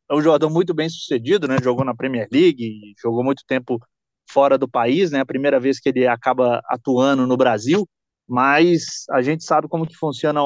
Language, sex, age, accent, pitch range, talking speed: Portuguese, male, 20-39, Brazilian, 135-175 Hz, 190 wpm